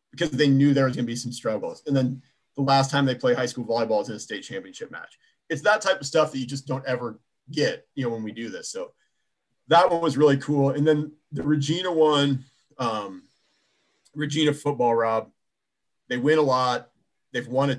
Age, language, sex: 30-49, English, male